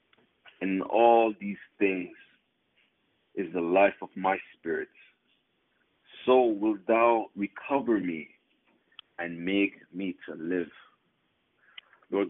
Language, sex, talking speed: English, male, 105 wpm